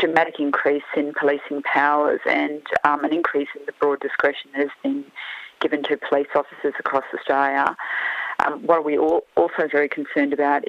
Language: English